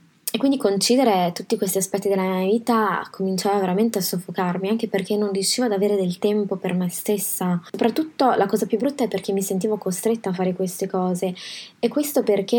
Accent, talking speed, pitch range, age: native, 195 wpm, 185-210 Hz, 20-39